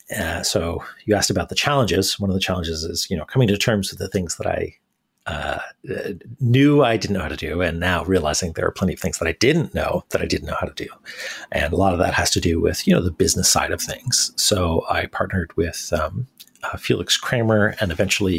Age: 40-59